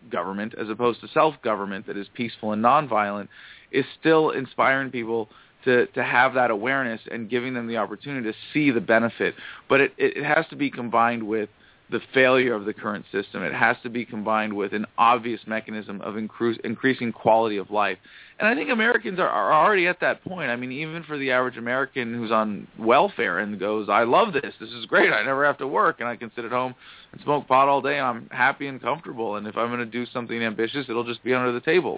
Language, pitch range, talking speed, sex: English, 110-135 Hz, 225 wpm, male